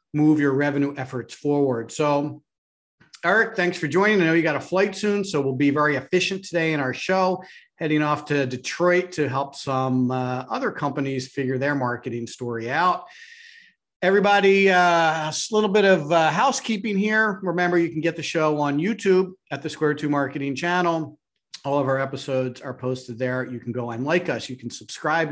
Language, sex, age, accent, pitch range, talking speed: English, male, 40-59, American, 130-175 Hz, 190 wpm